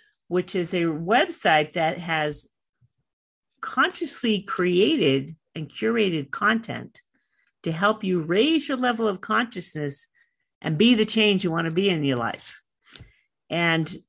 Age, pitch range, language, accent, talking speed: 50-69, 155-215 Hz, English, American, 130 wpm